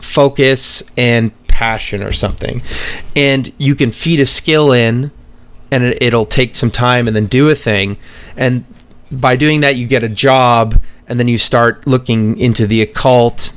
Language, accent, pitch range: English, American, 110-130 Hz